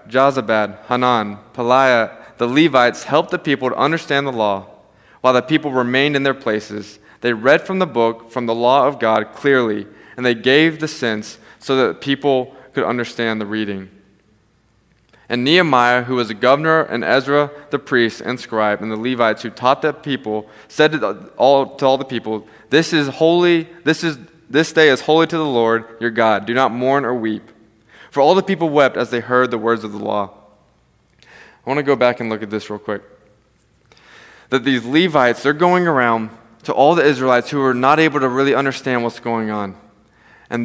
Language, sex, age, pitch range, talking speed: English, male, 20-39, 110-140 Hz, 195 wpm